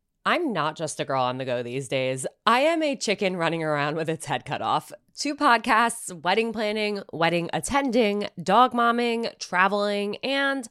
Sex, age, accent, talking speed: female, 20-39, American, 175 wpm